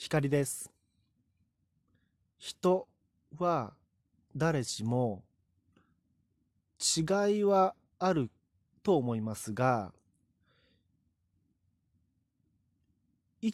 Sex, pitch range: male, 95-145 Hz